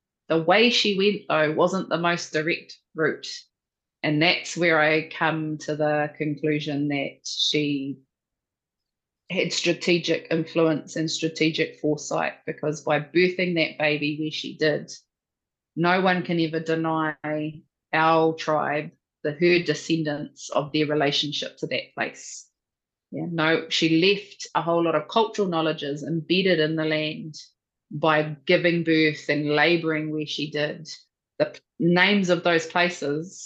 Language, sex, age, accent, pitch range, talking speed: English, female, 20-39, Australian, 150-170 Hz, 140 wpm